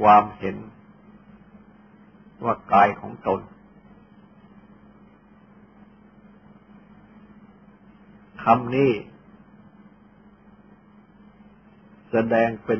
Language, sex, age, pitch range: Thai, male, 60-79, 200-210 Hz